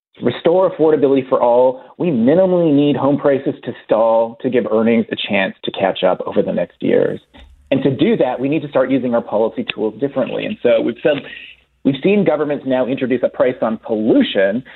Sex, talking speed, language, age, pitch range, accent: male, 195 wpm, English, 30-49, 125-170 Hz, American